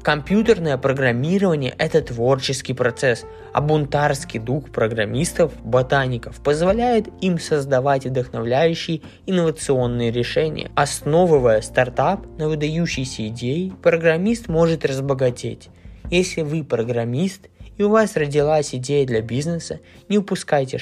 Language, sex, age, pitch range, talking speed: Russian, male, 20-39, 120-160 Hz, 100 wpm